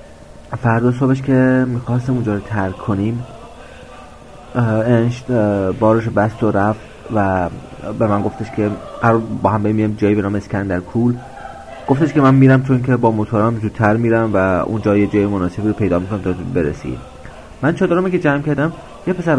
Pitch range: 100-130 Hz